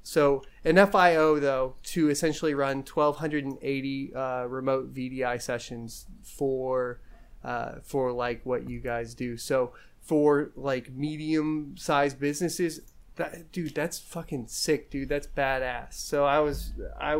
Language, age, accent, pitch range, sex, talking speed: English, 30-49, American, 125-150 Hz, male, 145 wpm